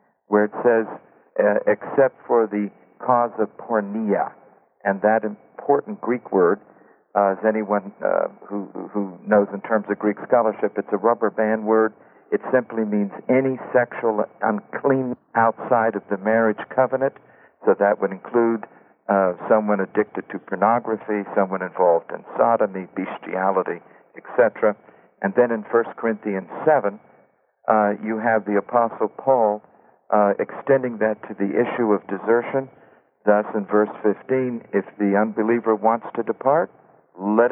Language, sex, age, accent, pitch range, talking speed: English, male, 60-79, American, 100-115 Hz, 140 wpm